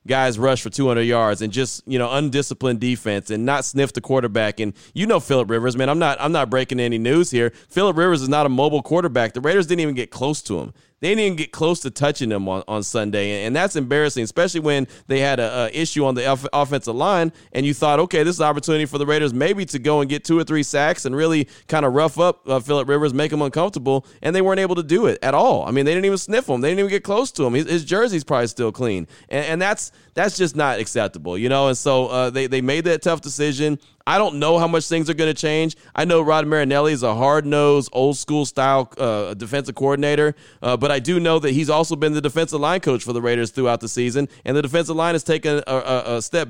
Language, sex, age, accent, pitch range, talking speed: English, male, 30-49, American, 130-165 Hz, 260 wpm